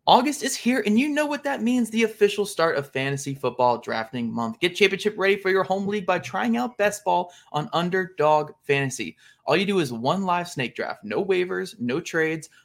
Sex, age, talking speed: male, 20-39, 210 wpm